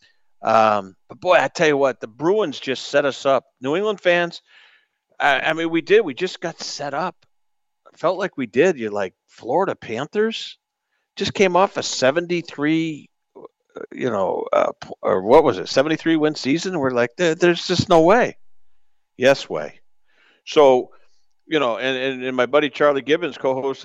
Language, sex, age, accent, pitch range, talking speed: English, male, 50-69, American, 135-185 Hz, 170 wpm